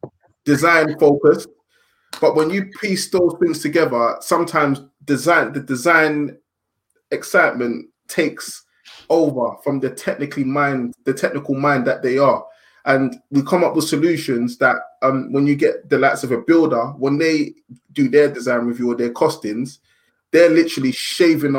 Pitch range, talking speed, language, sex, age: 130-170 Hz, 150 wpm, English, male, 20-39